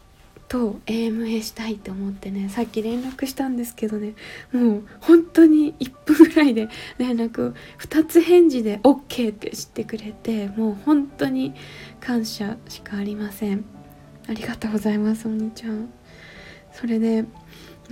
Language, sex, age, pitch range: Japanese, female, 20-39, 210-250 Hz